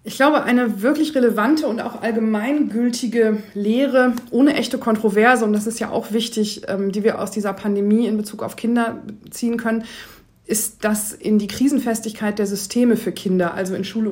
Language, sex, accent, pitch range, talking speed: German, female, German, 205-240 Hz, 175 wpm